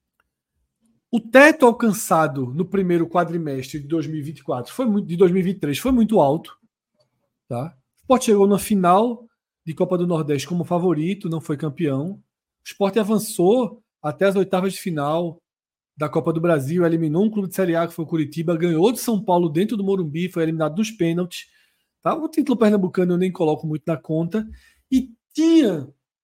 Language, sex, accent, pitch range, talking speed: Portuguese, male, Brazilian, 160-220 Hz, 170 wpm